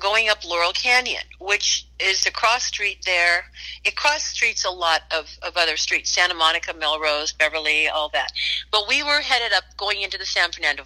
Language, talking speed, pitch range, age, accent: English, 195 wpm, 160-205 Hz, 50-69, American